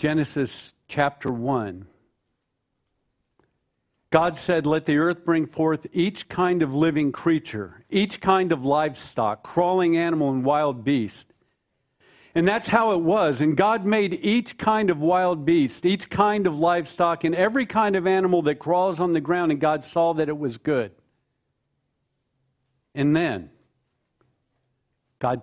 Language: English